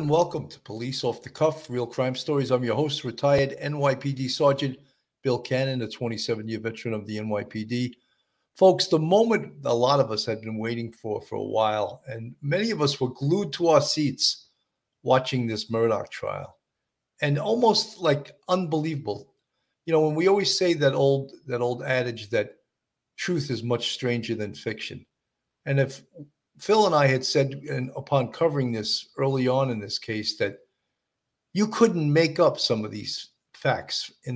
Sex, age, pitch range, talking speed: male, 50-69, 120-155 Hz, 170 wpm